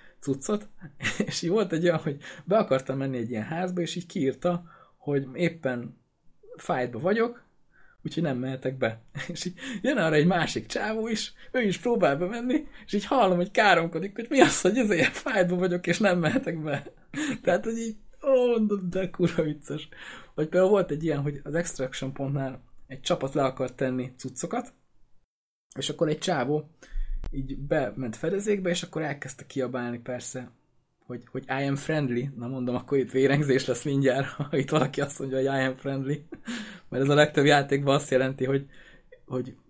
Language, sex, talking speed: Hungarian, male, 180 wpm